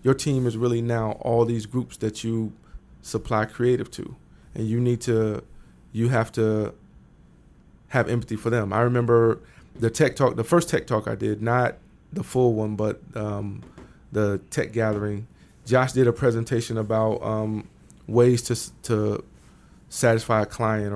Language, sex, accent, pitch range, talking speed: English, male, American, 105-120 Hz, 160 wpm